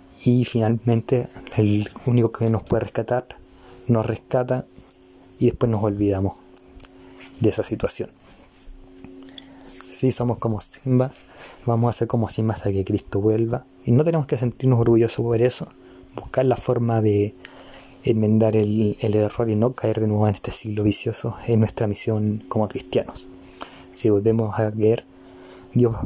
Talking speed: 150 wpm